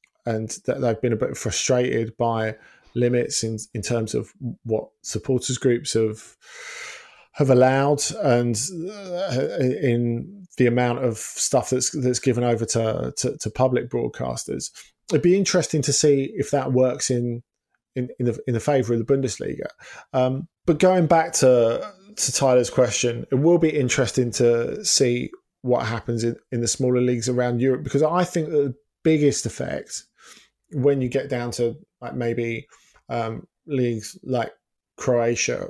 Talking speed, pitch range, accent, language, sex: 155 wpm, 120-140 Hz, British, English, male